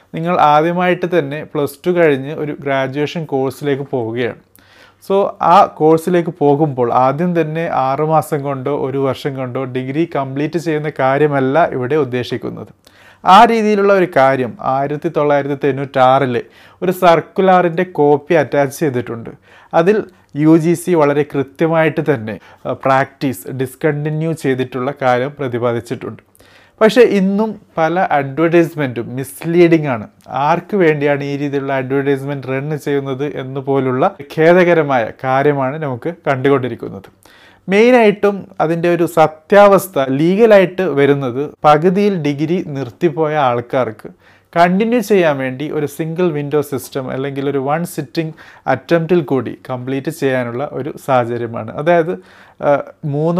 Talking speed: 105 wpm